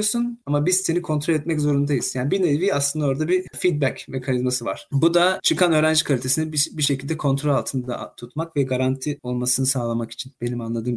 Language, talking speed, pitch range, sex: Turkish, 175 wpm, 130-160 Hz, male